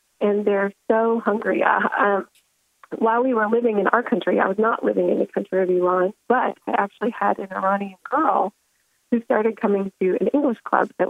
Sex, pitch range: female, 200-255 Hz